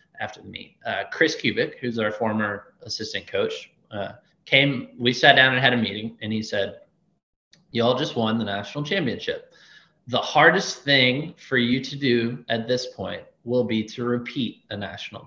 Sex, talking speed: male, 175 wpm